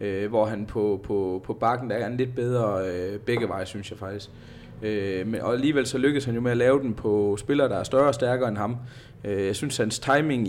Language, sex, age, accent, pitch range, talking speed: Danish, male, 20-39, native, 105-125 Hz, 250 wpm